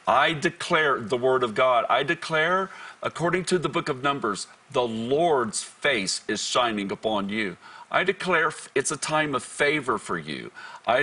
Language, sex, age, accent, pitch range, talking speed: English, male, 50-69, American, 120-155 Hz, 170 wpm